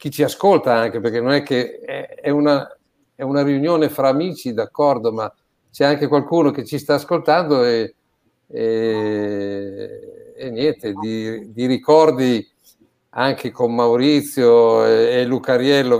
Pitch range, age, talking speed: 125-165 Hz, 50-69, 140 wpm